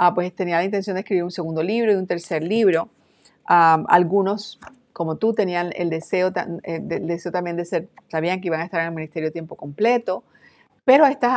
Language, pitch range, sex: Spanish, 170-210 Hz, female